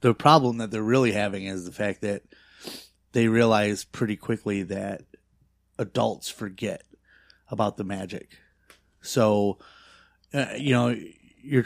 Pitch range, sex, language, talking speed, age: 95-115 Hz, male, English, 130 wpm, 30-49